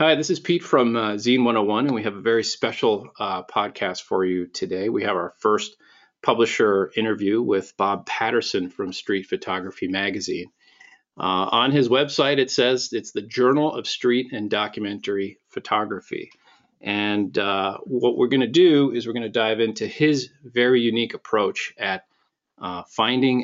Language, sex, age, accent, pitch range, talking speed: English, male, 40-59, American, 105-135 Hz, 170 wpm